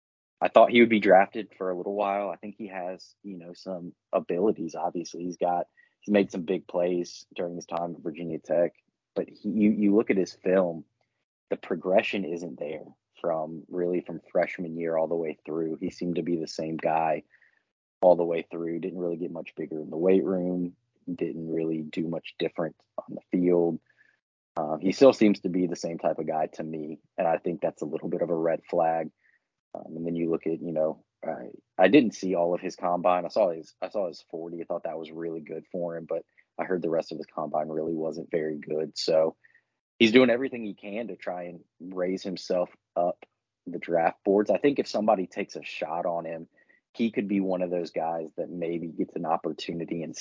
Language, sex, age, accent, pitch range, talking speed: English, male, 20-39, American, 80-95 Hz, 220 wpm